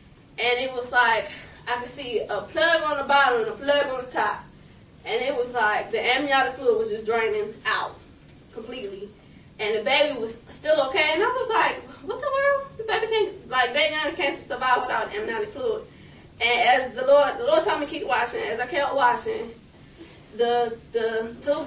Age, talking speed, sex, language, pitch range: 20-39, 195 wpm, female, English, 235-315 Hz